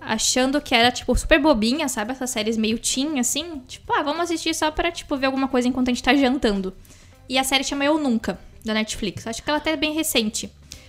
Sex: female